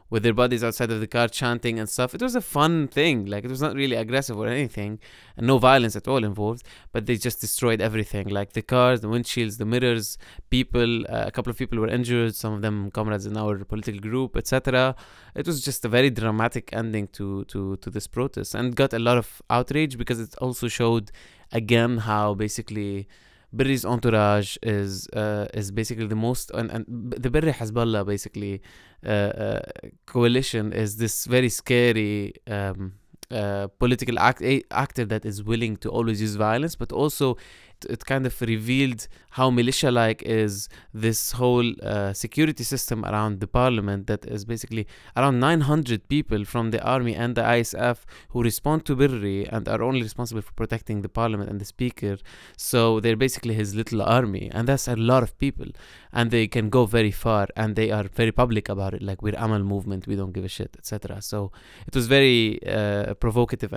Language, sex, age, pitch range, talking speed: English, male, 20-39, 105-125 Hz, 190 wpm